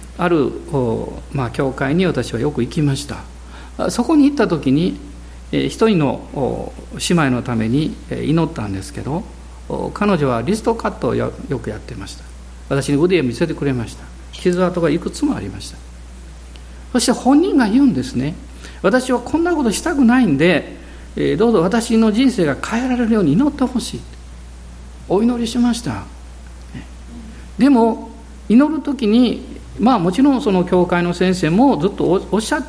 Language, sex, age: Japanese, male, 50-69